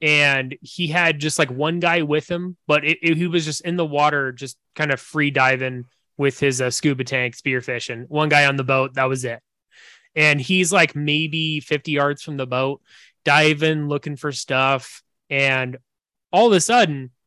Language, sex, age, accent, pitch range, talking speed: English, male, 20-39, American, 135-155 Hz, 195 wpm